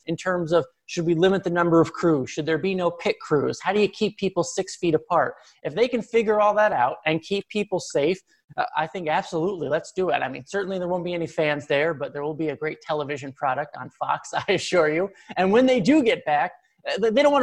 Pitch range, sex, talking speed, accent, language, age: 155-190 Hz, male, 250 wpm, American, English, 30-49